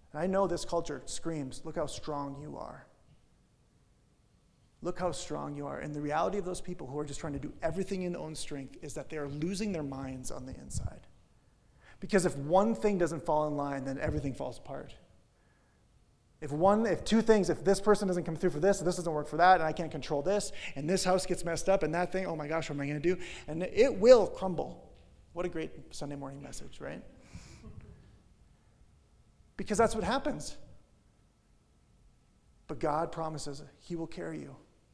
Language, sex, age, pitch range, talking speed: English, male, 30-49, 140-180 Hz, 205 wpm